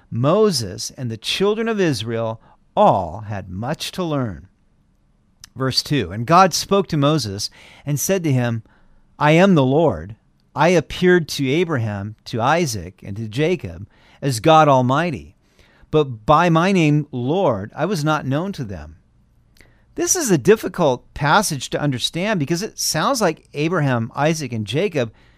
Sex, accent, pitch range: male, American, 115-170 Hz